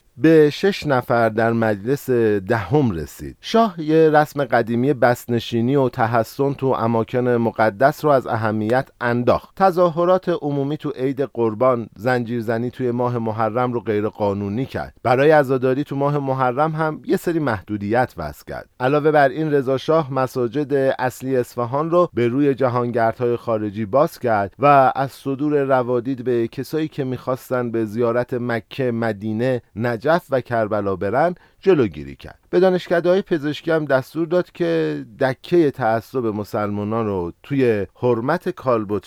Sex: male